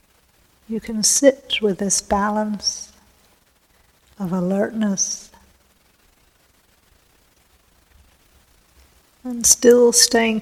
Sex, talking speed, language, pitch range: female, 65 wpm, English, 185-220 Hz